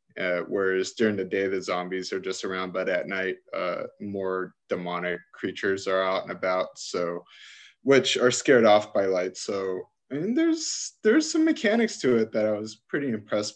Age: 20-39